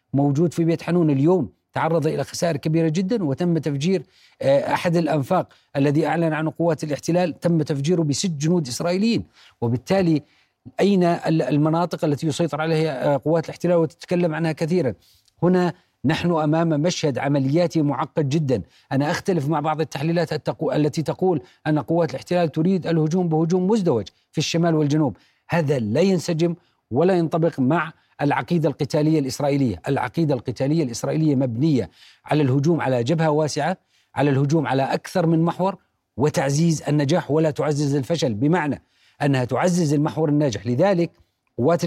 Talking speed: 135 wpm